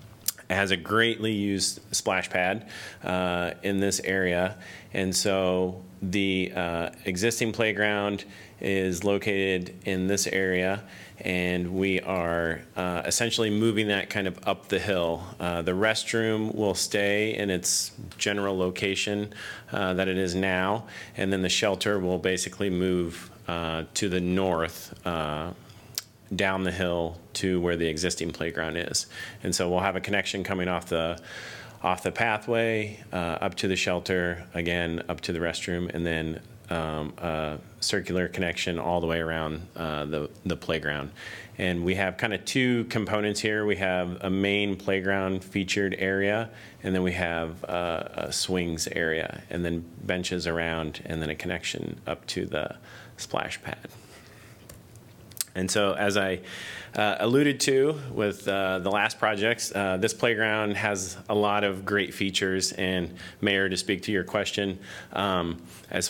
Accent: American